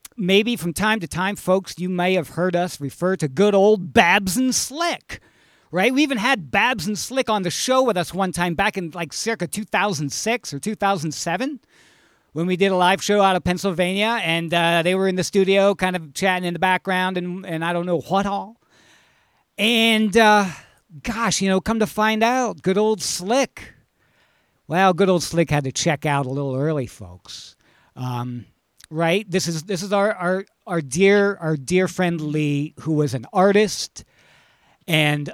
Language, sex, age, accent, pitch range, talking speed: English, male, 50-69, American, 165-215 Hz, 190 wpm